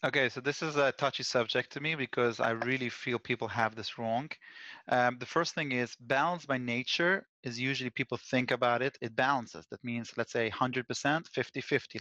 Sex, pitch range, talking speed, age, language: male, 115-135 Hz, 200 wpm, 30-49, English